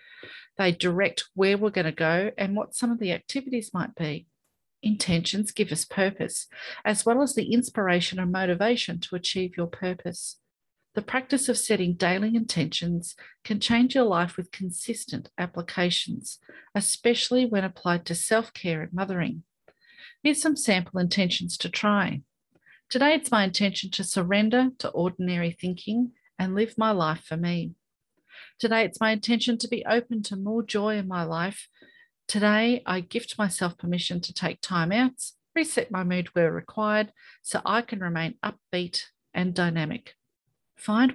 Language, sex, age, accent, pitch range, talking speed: English, female, 40-59, Australian, 180-235 Hz, 155 wpm